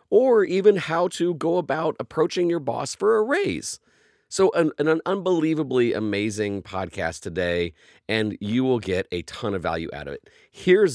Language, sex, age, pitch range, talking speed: English, male, 30-49, 85-120 Hz, 170 wpm